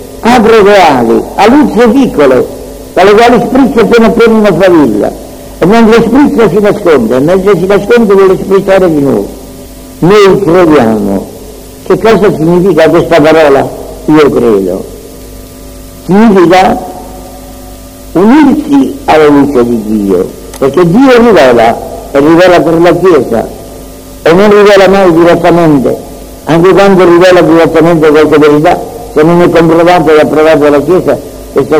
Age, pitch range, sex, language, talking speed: 60-79, 155-195 Hz, female, Italian, 125 wpm